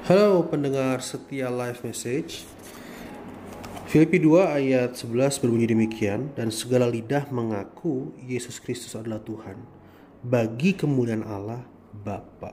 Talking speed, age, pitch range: 110 wpm, 20-39, 110-140 Hz